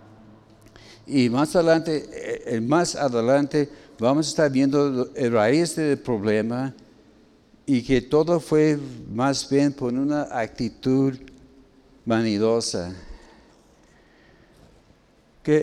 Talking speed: 90 wpm